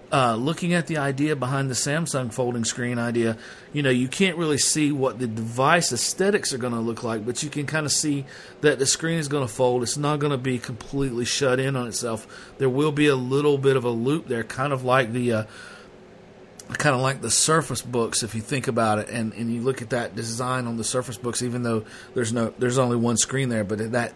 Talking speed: 240 wpm